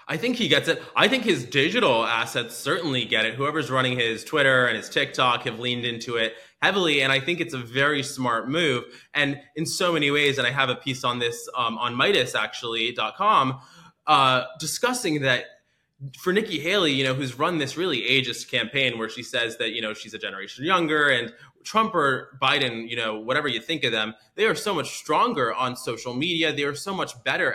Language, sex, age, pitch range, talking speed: English, male, 20-39, 115-145 Hz, 215 wpm